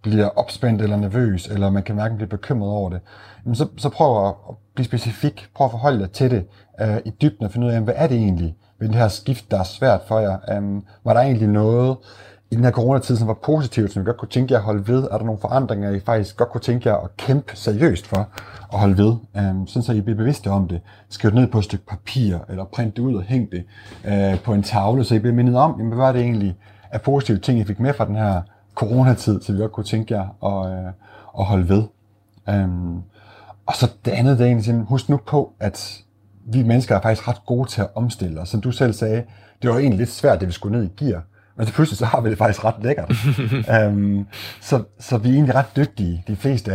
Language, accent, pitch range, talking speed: Danish, native, 100-120 Hz, 255 wpm